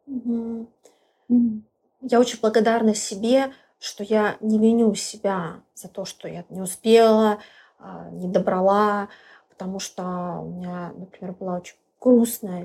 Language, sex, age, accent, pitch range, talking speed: Russian, female, 20-39, native, 195-230 Hz, 120 wpm